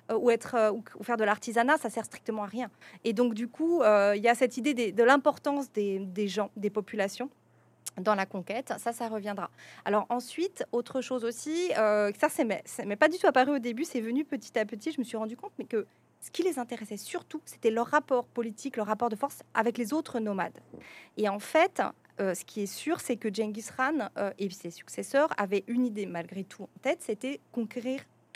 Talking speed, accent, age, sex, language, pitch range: 220 wpm, French, 30-49, female, French, 210-275 Hz